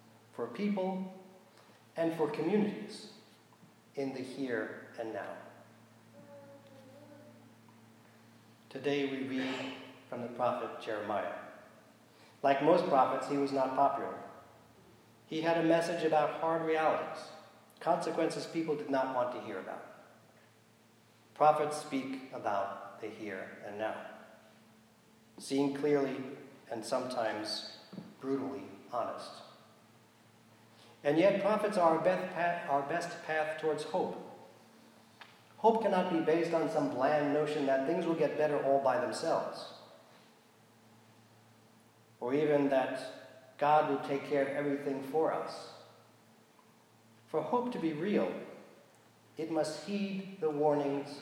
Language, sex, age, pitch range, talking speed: English, male, 40-59, 115-155 Hz, 115 wpm